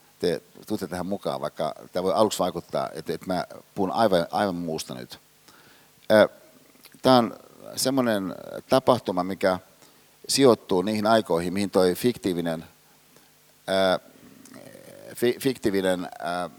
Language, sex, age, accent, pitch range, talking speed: Finnish, male, 60-79, native, 95-120 Hz, 100 wpm